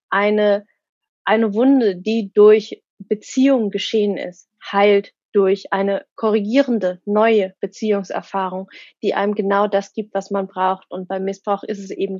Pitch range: 185-215 Hz